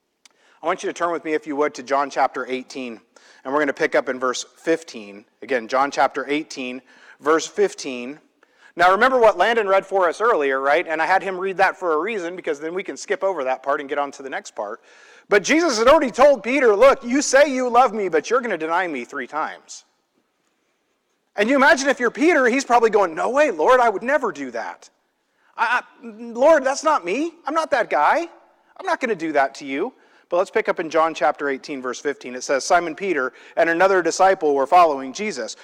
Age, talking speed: 40-59, 225 wpm